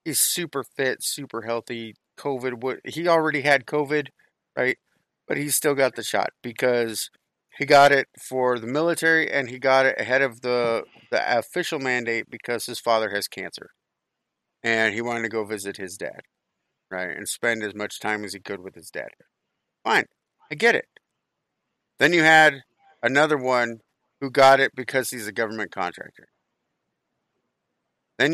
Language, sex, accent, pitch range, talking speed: English, male, American, 115-140 Hz, 165 wpm